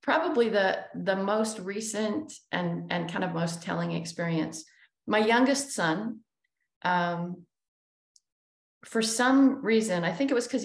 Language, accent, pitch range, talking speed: English, American, 165-215 Hz, 135 wpm